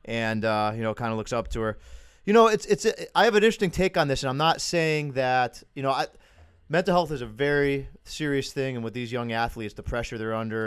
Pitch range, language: 110-140 Hz, English